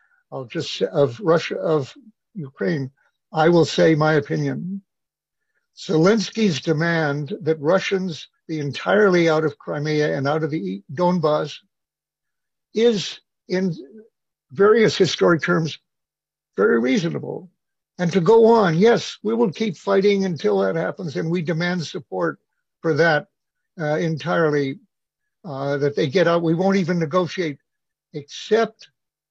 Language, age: English, 60-79